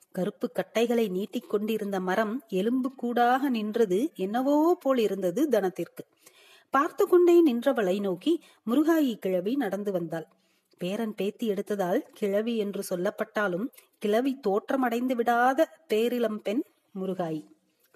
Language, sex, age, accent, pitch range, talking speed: Tamil, female, 30-49, native, 200-265 Hz, 105 wpm